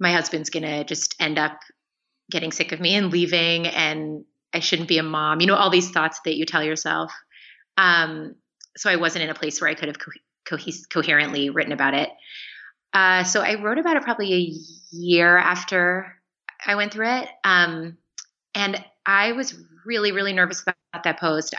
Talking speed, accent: 190 wpm, American